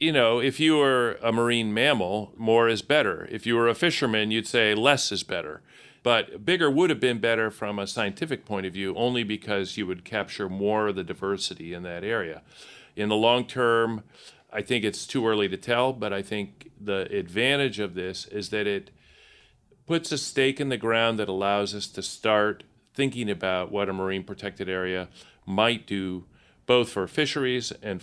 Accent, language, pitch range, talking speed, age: American, English, 100-120 Hz, 195 wpm, 40-59